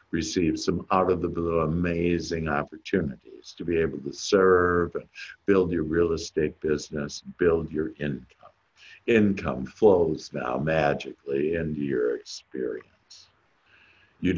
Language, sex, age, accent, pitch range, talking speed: English, male, 60-79, American, 80-95 Hz, 125 wpm